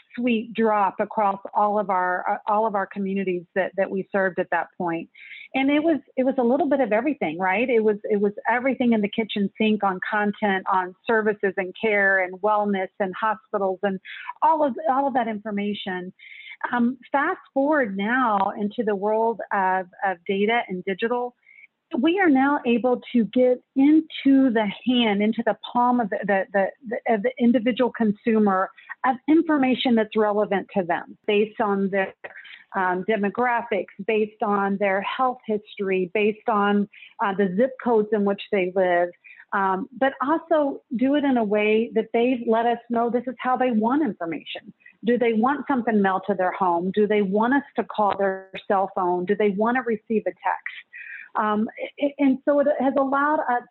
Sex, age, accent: female, 40-59, American